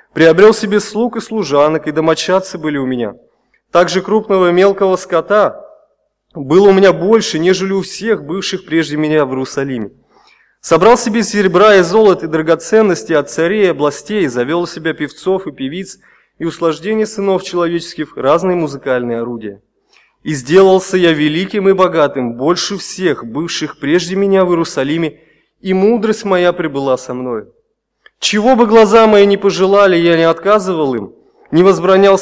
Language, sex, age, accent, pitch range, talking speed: Russian, male, 20-39, native, 150-195 Hz, 155 wpm